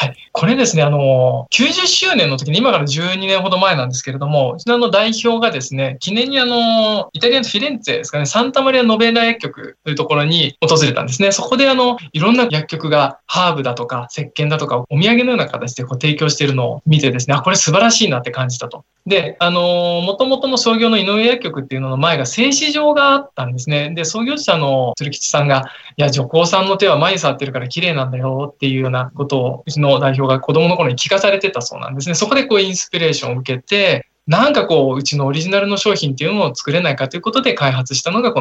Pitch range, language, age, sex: 135-200 Hz, Japanese, 20-39, male